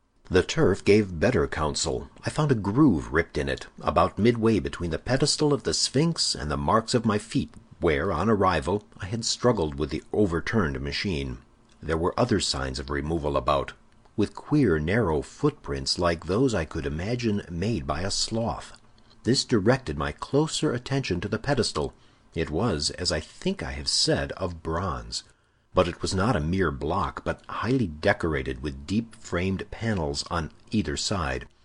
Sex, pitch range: male, 80-120 Hz